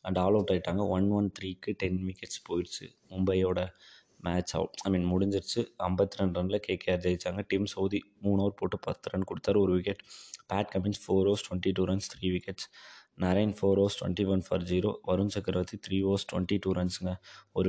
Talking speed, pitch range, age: 185 wpm, 90-105 Hz, 20-39